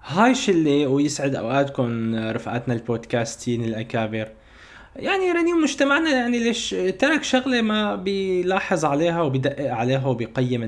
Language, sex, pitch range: Arabic, male, 125-175 Hz